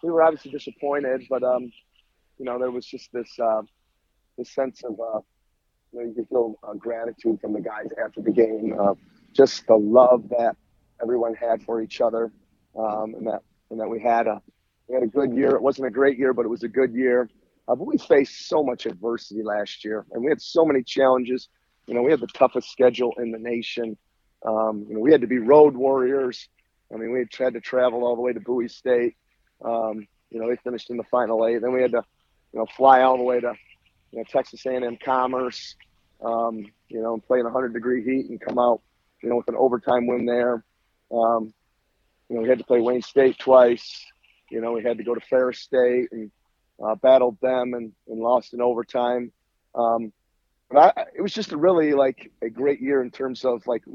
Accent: American